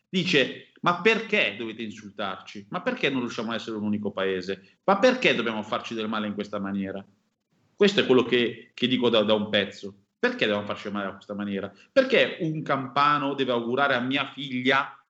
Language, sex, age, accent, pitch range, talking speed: Italian, male, 40-59, native, 110-145 Hz, 190 wpm